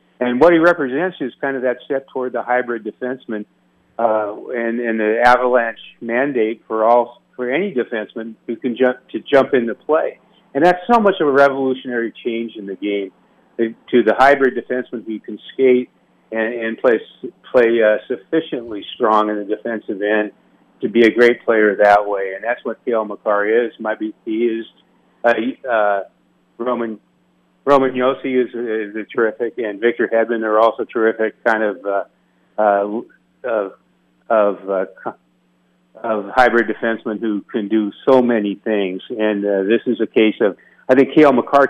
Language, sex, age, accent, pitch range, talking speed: English, male, 50-69, American, 105-125 Hz, 170 wpm